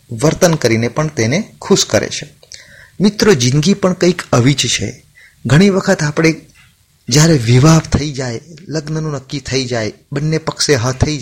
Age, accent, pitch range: 30-49, native, 115-155 Hz